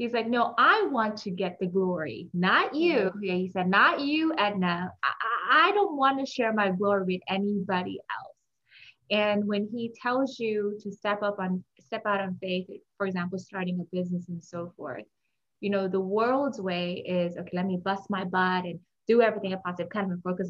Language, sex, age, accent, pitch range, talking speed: English, female, 20-39, American, 180-225 Hz, 200 wpm